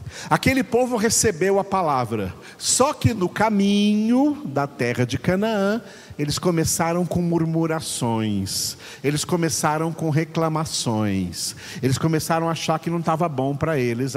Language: Portuguese